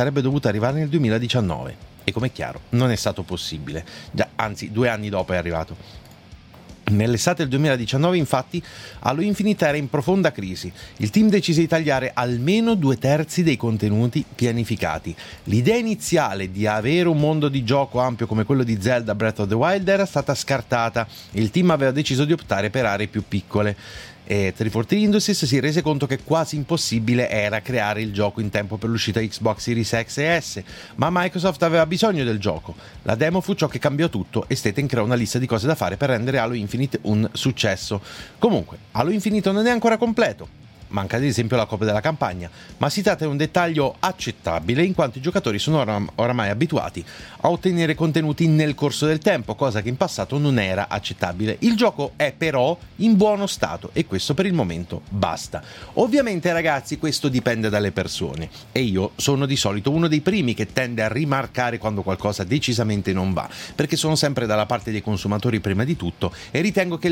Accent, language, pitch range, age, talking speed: native, Italian, 105-155 Hz, 30-49, 190 wpm